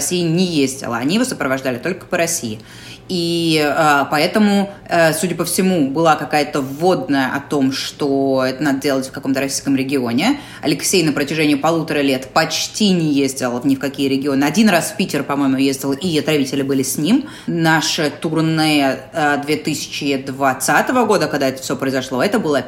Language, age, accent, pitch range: Russian, 20-39, native, 135-160 Hz